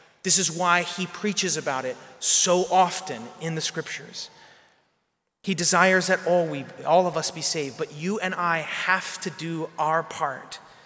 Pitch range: 170-220 Hz